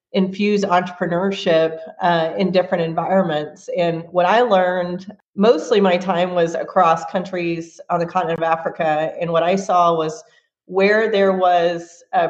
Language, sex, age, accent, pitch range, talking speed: English, female, 40-59, American, 170-195 Hz, 145 wpm